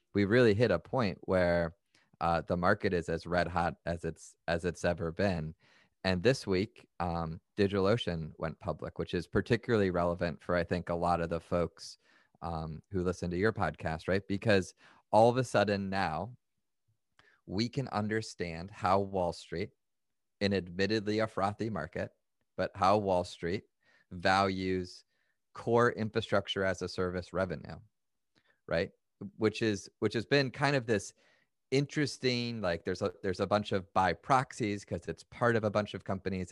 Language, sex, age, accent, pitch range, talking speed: English, male, 30-49, American, 90-110 Hz, 165 wpm